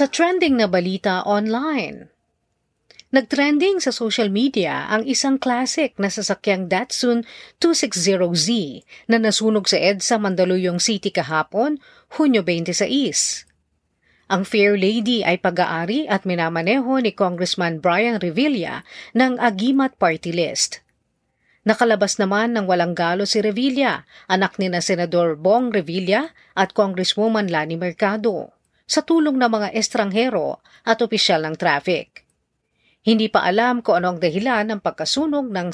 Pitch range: 180-235 Hz